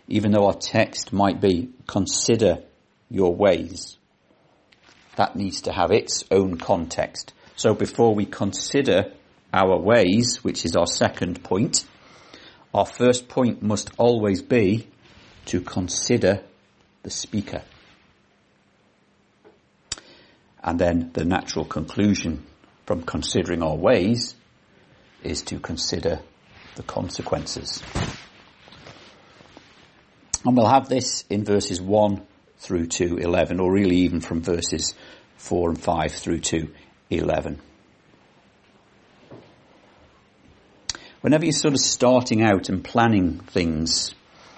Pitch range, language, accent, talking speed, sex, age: 90-120 Hz, English, British, 110 wpm, male, 50-69